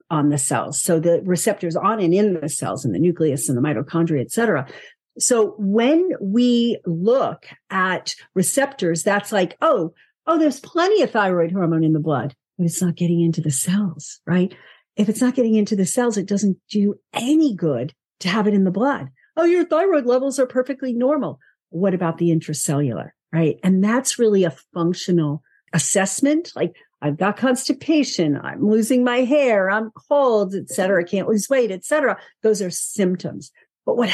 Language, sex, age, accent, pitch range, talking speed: English, female, 50-69, American, 165-230 Hz, 180 wpm